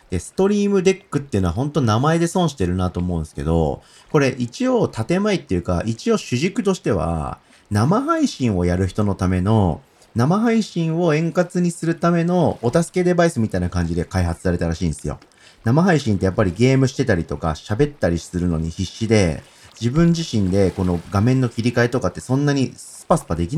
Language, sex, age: Japanese, male, 40-59